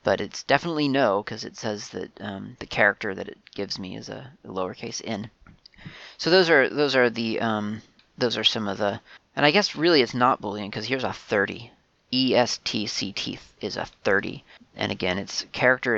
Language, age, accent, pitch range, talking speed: English, 30-49, American, 110-140 Hz, 190 wpm